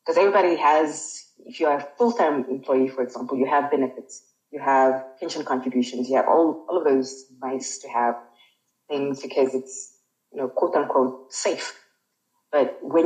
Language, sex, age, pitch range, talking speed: English, female, 30-49, 130-180 Hz, 165 wpm